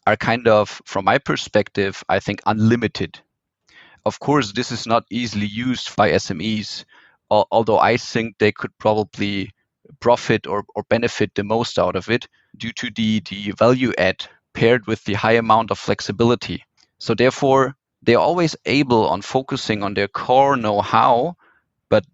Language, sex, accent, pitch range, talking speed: English, male, German, 105-130 Hz, 155 wpm